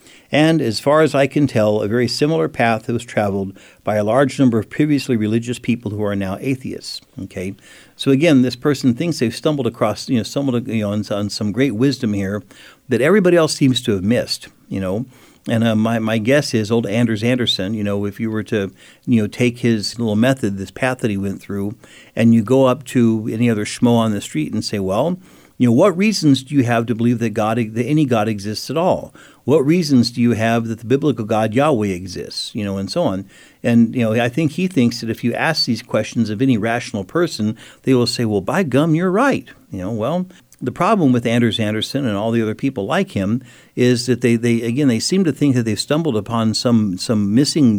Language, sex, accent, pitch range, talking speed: English, male, American, 110-130 Hz, 230 wpm